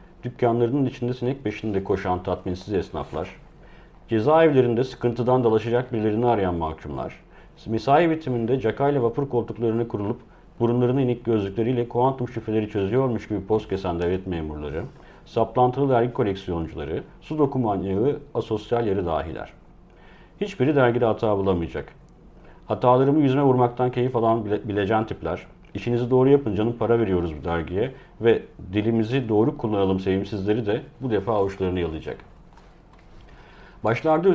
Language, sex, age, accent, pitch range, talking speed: Turkish, male, 50-69, native, 100-130 Hz, 120 wpm